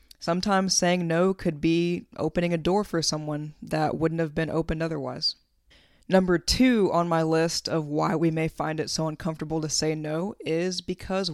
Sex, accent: female, American